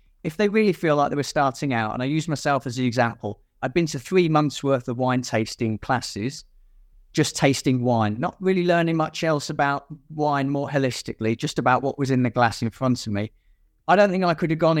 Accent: British